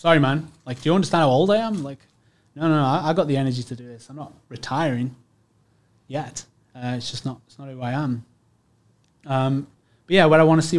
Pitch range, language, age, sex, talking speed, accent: 135-165 Hz, English, 20-39, male, 240 wpm, British